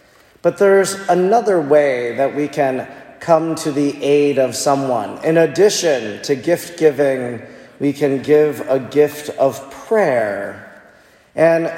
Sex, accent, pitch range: male, American, 140-175 Hz